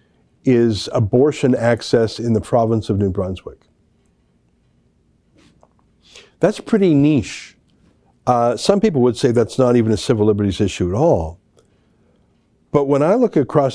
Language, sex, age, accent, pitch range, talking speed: English, male, 50-69, American, 105-130 Hz, 135 wpm